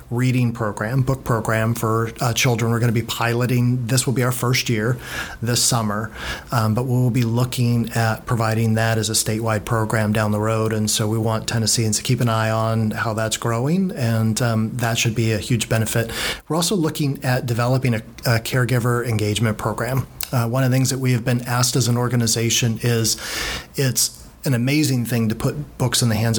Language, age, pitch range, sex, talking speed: English, 40-59, 110-125 Hz, male, 205 wpm